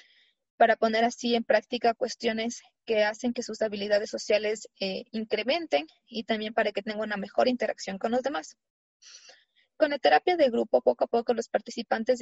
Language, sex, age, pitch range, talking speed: Spanish, female, 20-39, 215-260 Hz, 170 wpm